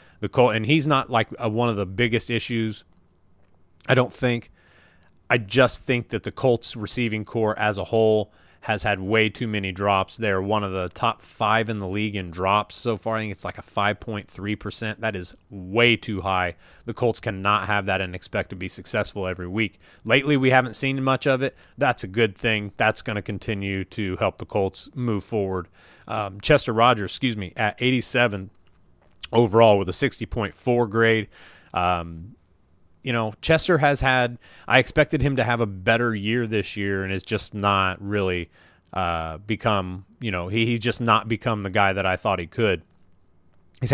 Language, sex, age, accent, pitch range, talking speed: English, male, 30-49, American, 95-115 Hz, 190 wpm